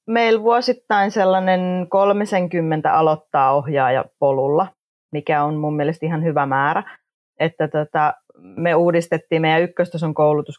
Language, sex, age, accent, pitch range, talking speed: Finnish, female, 30-49, native, 145-170 Hz, 115 wpm